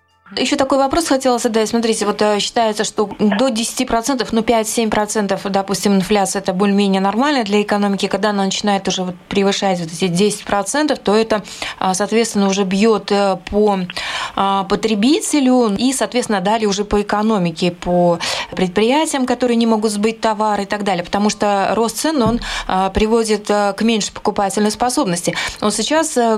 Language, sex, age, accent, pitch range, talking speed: Russian, female, 20-39, native, 195-240 Hz, 145 wpm